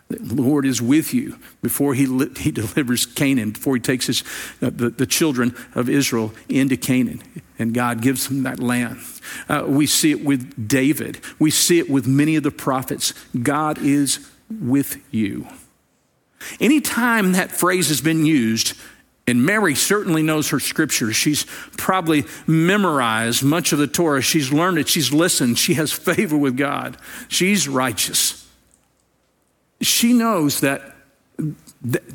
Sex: male